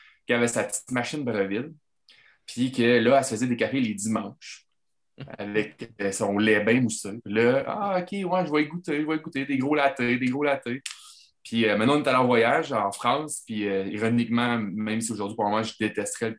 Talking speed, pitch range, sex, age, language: 215 wpm, 100-120 Hz, male, 20-39, French